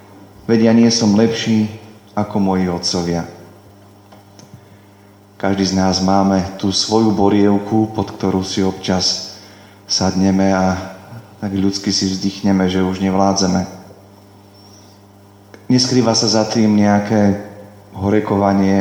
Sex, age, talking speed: male, 30-49, 110 wpm